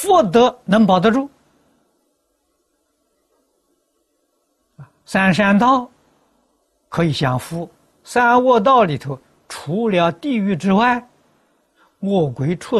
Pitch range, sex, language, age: 135-200 Hz, male, Chinese, 60-79